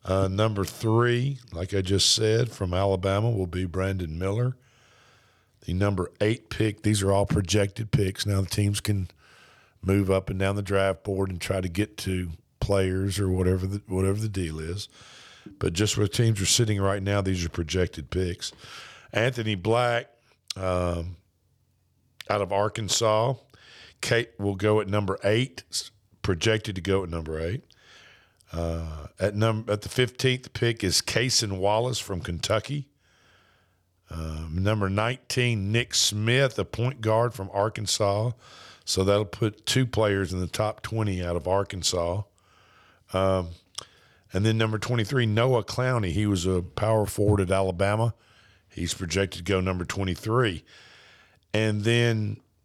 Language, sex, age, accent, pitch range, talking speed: English, male, 50-69, American, 95-115 Hz, 150 wpm